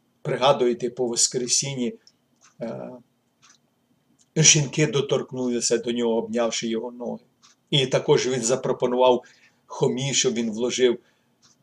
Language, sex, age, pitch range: Ukrainian, male, 50-69, 120-140 Hz